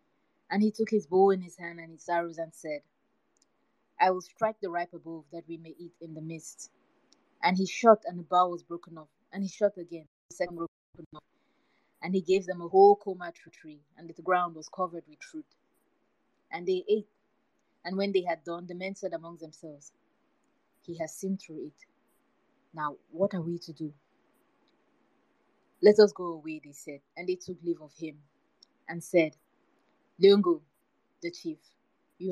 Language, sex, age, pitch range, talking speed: English, female, 20-39, 165-205 Hz, 185 wpm